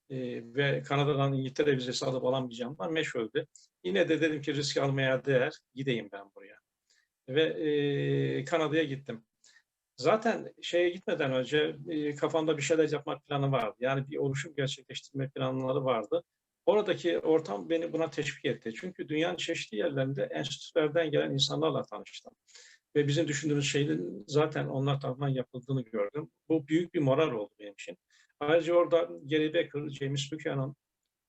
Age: 50-69